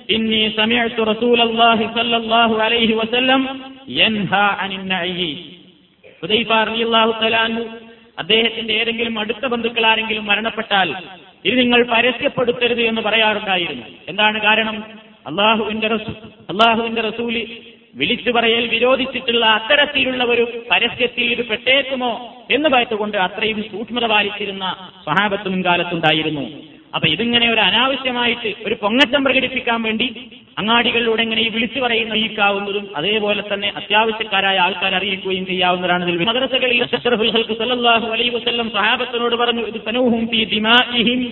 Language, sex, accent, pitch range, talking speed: Malayalam, male, native, 215-235 Hz, 70 wpm